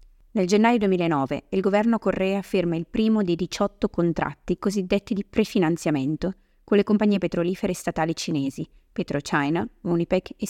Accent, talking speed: native, 135 wpm